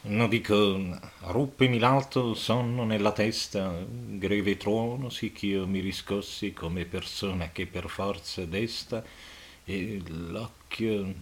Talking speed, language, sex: 125 wpm, Italian, male